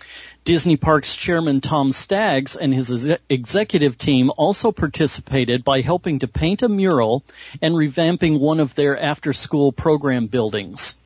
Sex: male